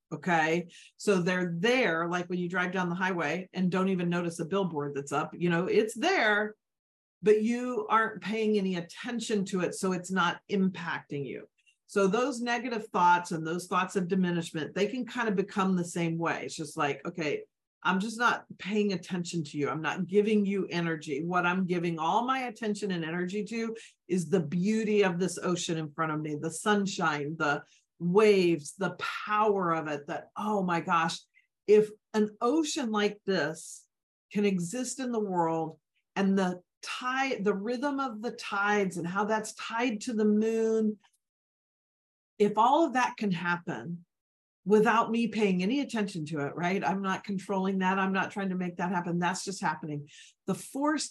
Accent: American